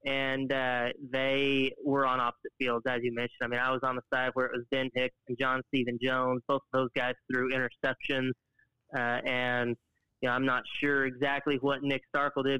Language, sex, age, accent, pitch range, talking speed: English, male, 20-39, American, 125-140 Hz, 210 wpm